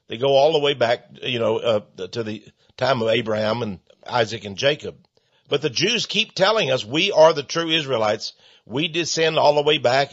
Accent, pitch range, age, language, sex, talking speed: American, 130-175 Hz, 50-69, English, male, 205 wpm